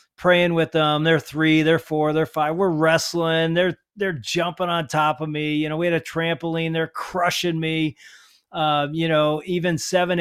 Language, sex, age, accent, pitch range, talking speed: English, male, 40-59, American, 155-190 Hz, 190 wpm